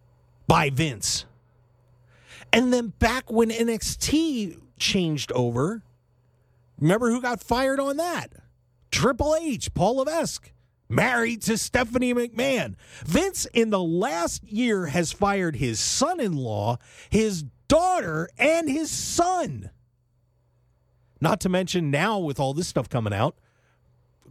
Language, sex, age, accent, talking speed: English, male, 40-59, American, 120 wpm